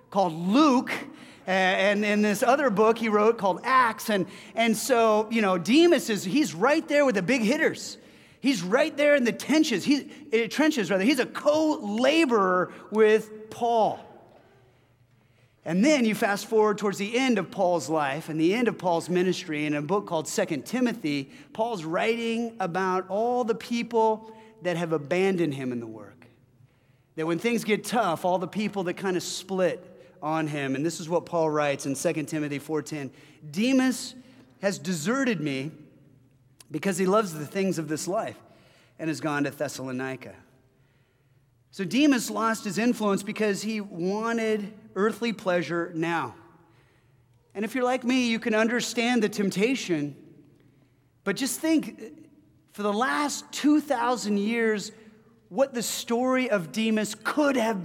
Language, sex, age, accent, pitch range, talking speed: English, male, 30-49, American, 160-230 Hz, 160 wpm